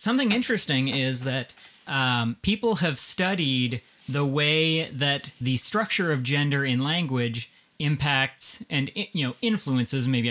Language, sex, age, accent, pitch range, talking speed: English, male, 30-49, American, 125-150 Hz, 135 wpm